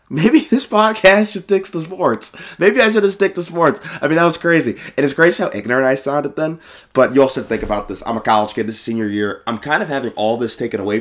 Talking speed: 265 wpm